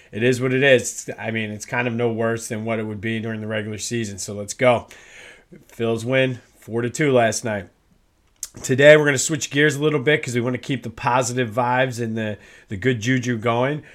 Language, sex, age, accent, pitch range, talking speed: English, male, 30-49, American, 120-145 Hz, 230 wpm